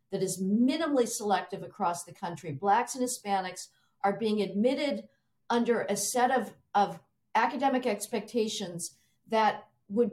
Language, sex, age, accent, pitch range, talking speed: English, female, 50-69, American, 185-235 Hz, 130 wpm